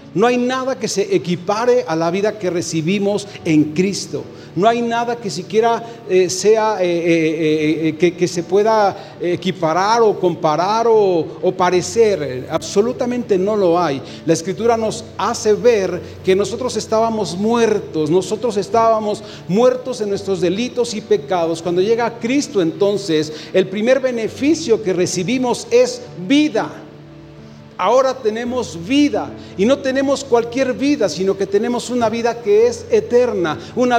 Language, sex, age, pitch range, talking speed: Spanish, male, 40-59, 180-240 Hz, 145 wpm